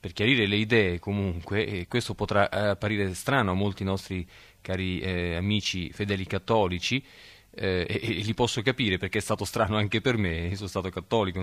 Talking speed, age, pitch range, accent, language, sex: 180 wpm, 30-49, 95-125 Hz, native, Italian, male